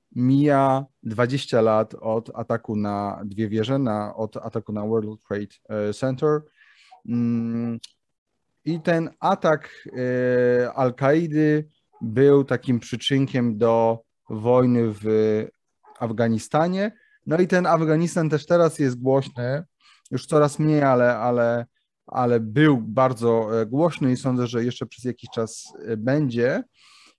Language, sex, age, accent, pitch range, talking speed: Polish, male, 30-49, native, 115-140 Hz, 115 wpm